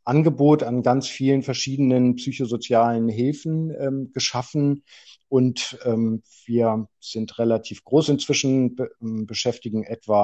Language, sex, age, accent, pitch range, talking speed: German, male, 50-69, German, 115-135 Hz, 105 wpm